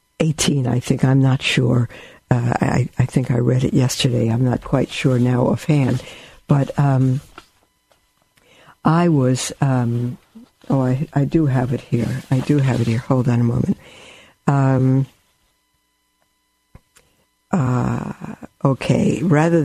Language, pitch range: English, 125-150 Hz